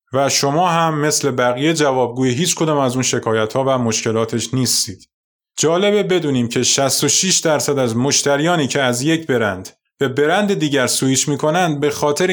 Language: Persian